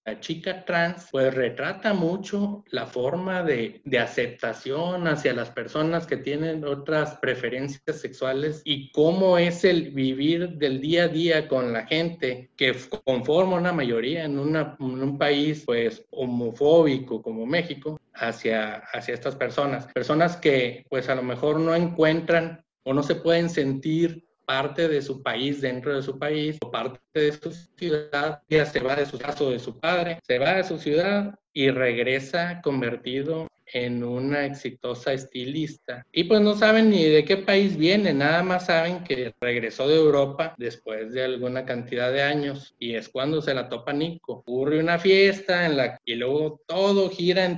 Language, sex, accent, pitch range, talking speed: Spanish, male, Mexican, 130-165 Hz, 170 wpm